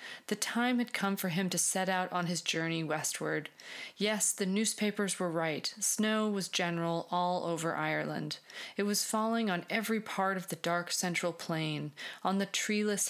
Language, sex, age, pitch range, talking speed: English, female, 30-49, 170-210 Hz, 175 wpm